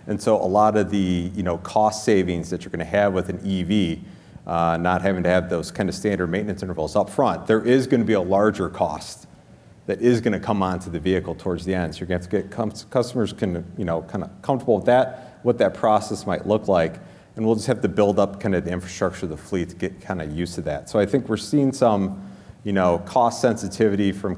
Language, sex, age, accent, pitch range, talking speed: English, male, 30-49, American, 90-105 Hz, 230 wpm